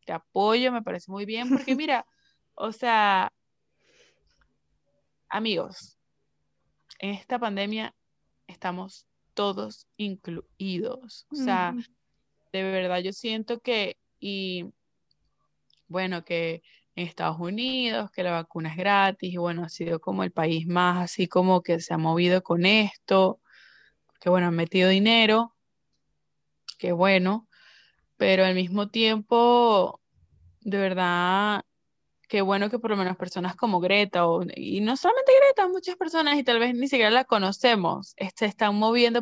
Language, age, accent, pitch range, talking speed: Spanish, 20-39, Venezuelan, 180-225 Hz, 140 wpm